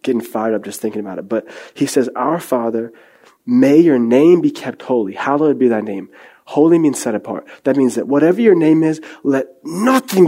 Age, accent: 20-39, American